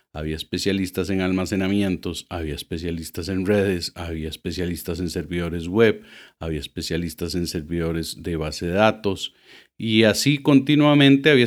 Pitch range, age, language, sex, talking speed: 90-125 Hz, 40-59, Spanish, male, 130 wpm